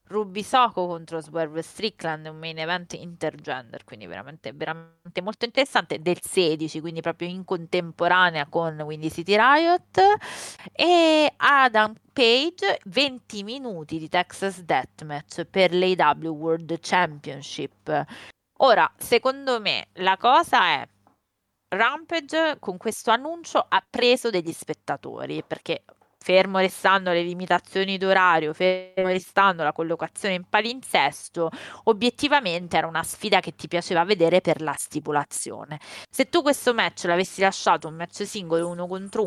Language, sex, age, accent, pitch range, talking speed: Italian, female, 20-39, native, 160-215 Hz, 125 wpm